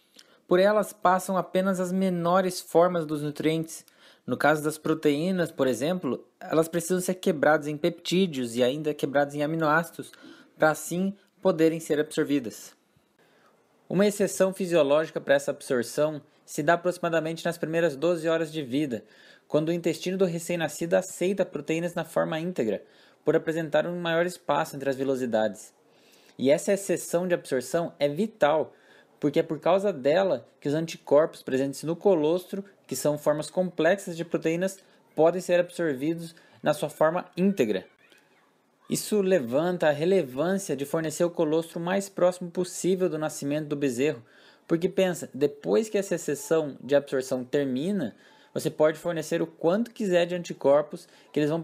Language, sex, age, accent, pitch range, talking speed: Portuguese, male, 20-39, Brazilian, 150-180 Hz, 150 wpm